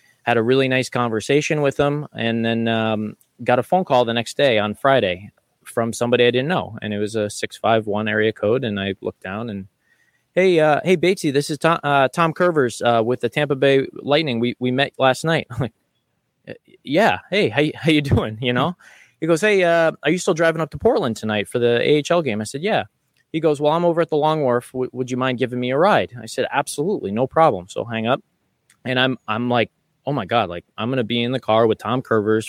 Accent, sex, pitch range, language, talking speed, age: American, male, 110-135 Hz, English, 240 wpm, 20-39